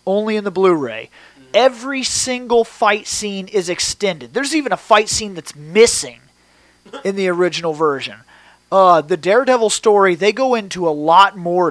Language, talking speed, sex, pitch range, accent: English, 160 wpm, male, 170-210 Hz, American